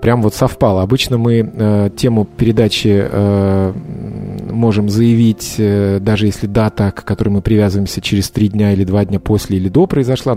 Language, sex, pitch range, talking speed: Russian, male, 100-125 Hz, 170 wpm